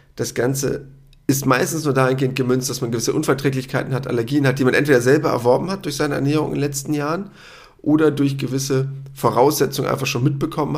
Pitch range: 125-150 Hz